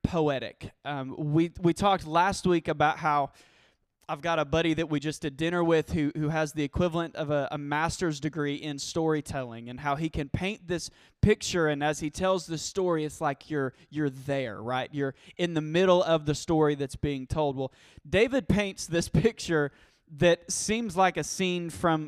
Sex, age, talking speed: male, 20-39, 195 wpm